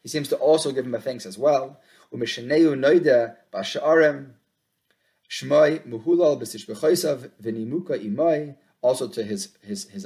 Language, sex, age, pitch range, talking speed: English, male, 30-49, 115-155 Hz, 90 wpm